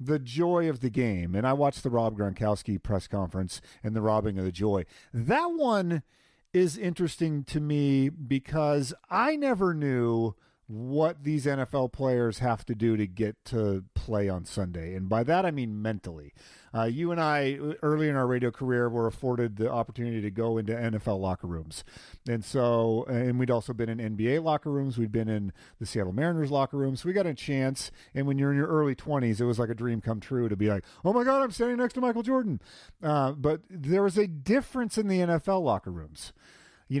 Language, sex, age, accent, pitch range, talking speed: English, male, 40-59, American, 110-155 Hz, 205 wpm